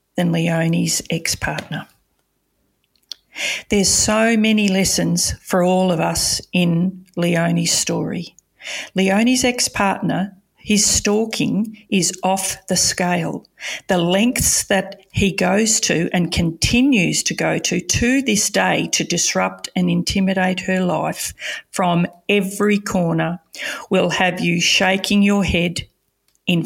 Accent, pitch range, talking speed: Australian, 175-205 Hz, 115 wpm